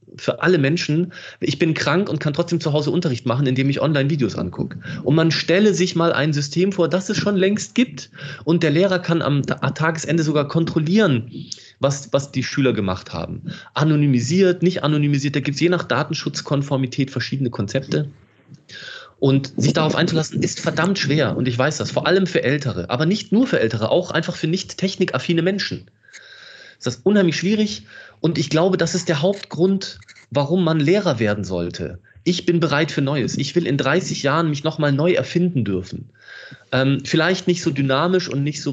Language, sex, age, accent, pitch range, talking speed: German, male, 30-49, German, 140-180 Hz, 185 wpm